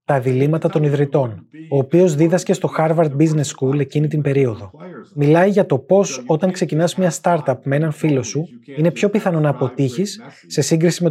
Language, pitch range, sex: Greek, 135-170 Hz, male